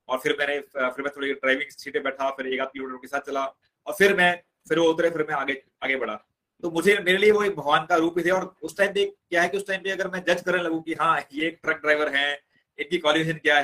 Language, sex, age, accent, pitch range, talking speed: Hindi, male, 30-49, native, 140-175 Hz, 275 wpm